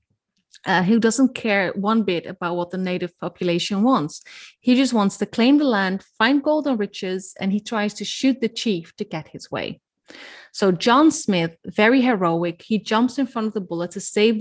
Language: English